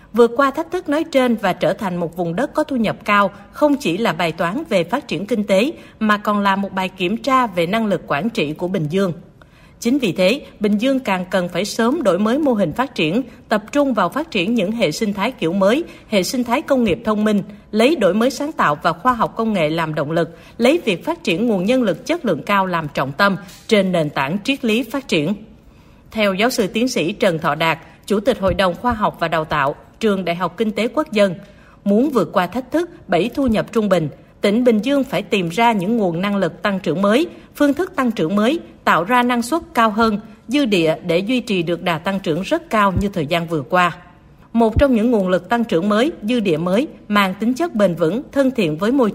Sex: female